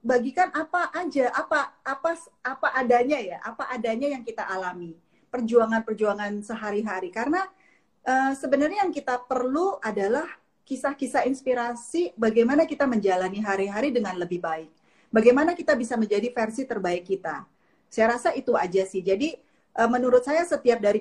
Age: 30-49